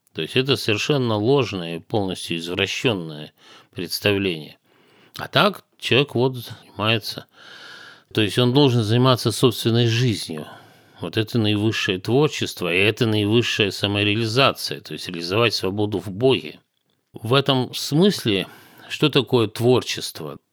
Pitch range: 95-125 Hz